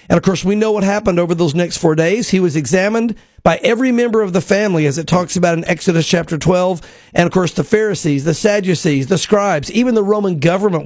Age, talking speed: 50-69, 230 wpm